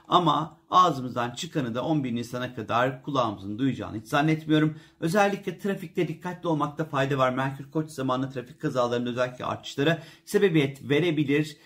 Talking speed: 135 wpm